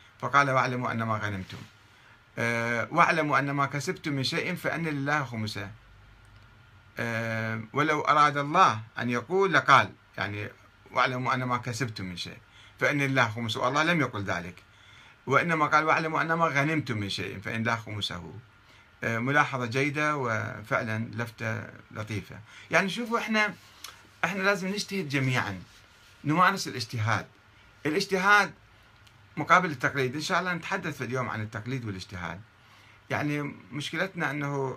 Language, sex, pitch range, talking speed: Arabic, male, 110-155 Hz, 125 wpm